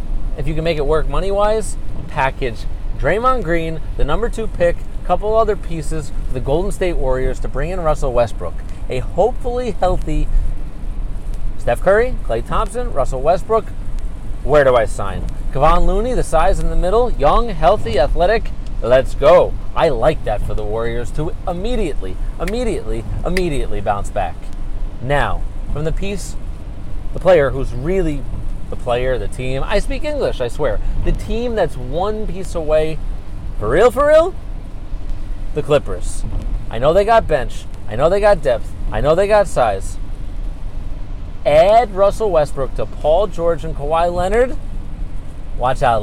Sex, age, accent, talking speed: male, 30-49, American, 155 wpm